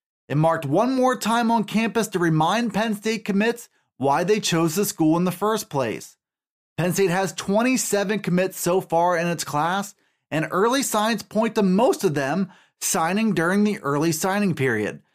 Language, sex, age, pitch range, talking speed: English, male, 30-49, 160-215 Hz, 180 wpm